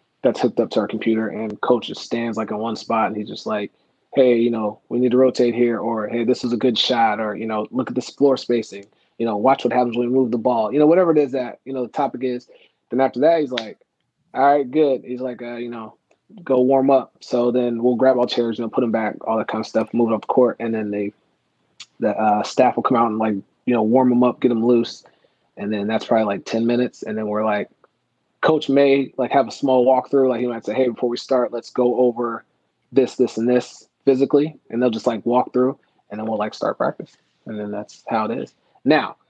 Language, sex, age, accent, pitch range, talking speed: English, male, 20-39, American, 115-130 Hz, 260 wpm